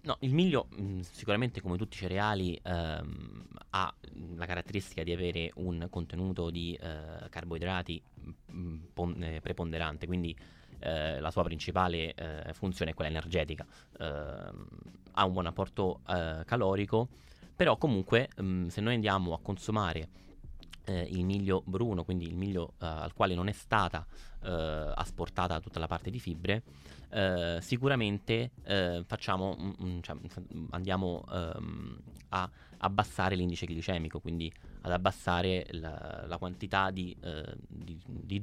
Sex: male